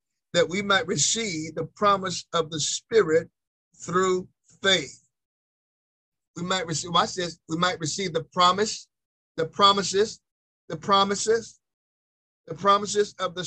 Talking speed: 130 wpm